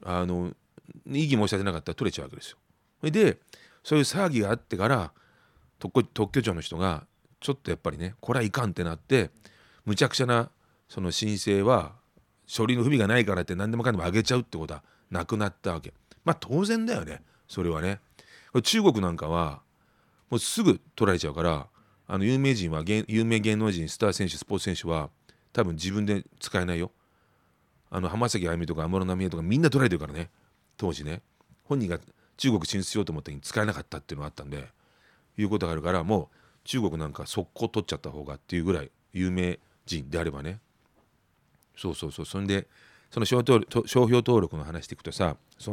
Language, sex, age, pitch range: Japanese, male, 40-59, 85-110 Hz